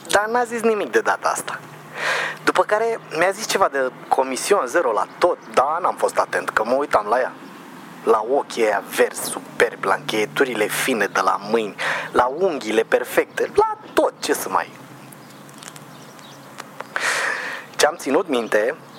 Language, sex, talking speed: Romanian, male, 150 wpm